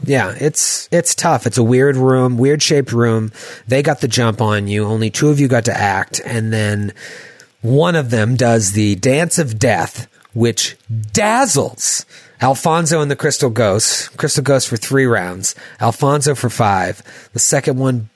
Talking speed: 170 wpm